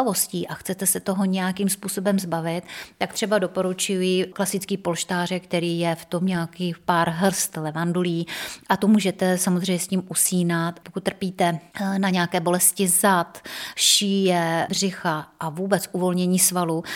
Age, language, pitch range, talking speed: 30-49, Czech, 170-190 Hz, 140 wpm